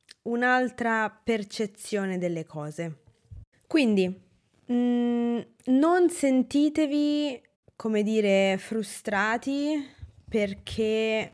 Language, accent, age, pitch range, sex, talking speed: Italian, native, 20-39, 185-235 Hz, female, 60 wpm